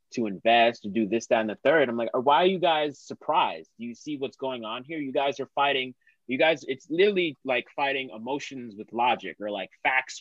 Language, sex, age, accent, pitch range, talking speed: English, male, 20-39, American, 115-140 Hz, 225 wpm